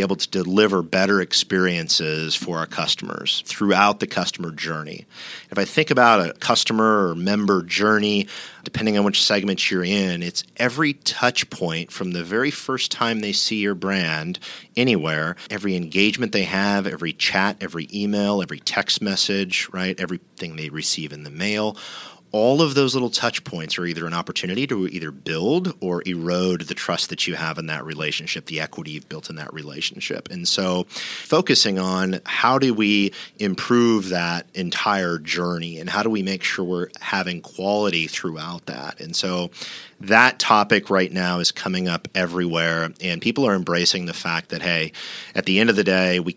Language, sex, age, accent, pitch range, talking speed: English, male, 40-59, American, 85-100 Hz, 175 wpm